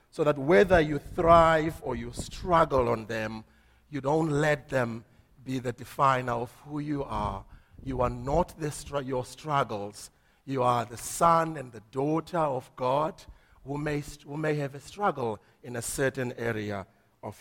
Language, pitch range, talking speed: English, 125-170 Hz, 160 wpm